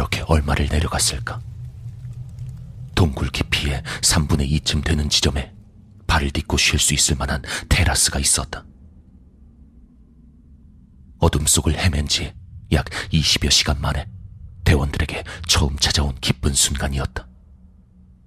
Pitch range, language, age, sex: 75-95 Hz, Korean, 40-59, male